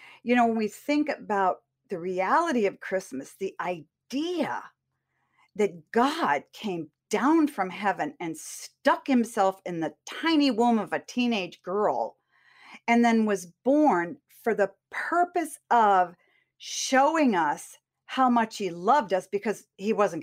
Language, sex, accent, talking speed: English, female, American, 140 wpm